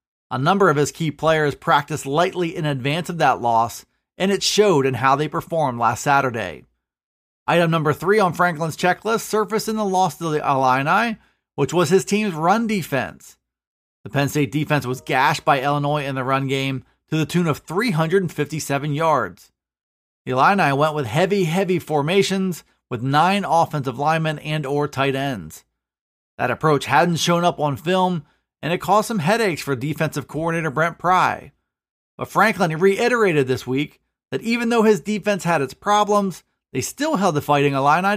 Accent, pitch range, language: American, 140-190 Hz, English